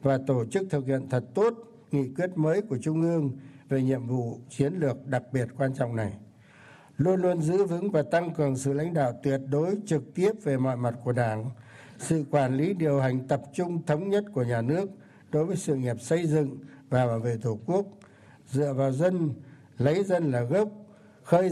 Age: 60-79